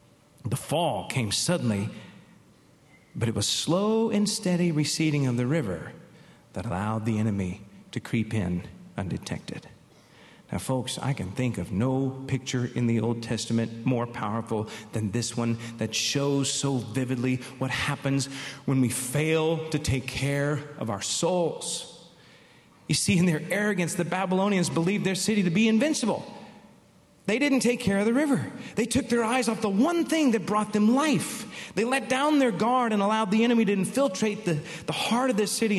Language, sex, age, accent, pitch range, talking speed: English, male, 40-59, American, 130-215 Hz, 175 wpm